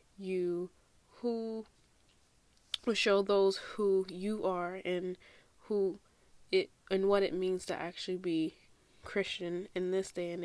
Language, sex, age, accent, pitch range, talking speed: English, female, 20-39, American, 175-200 Hz, 130 wpm